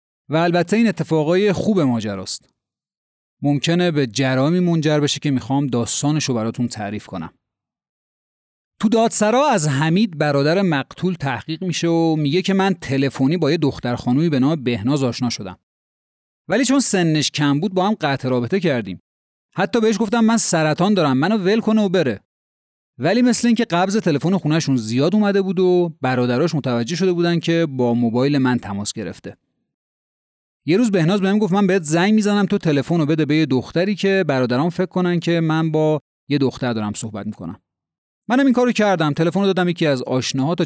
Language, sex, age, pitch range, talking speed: Persian, male, 30-49, 130-190 Hz, 180 wpm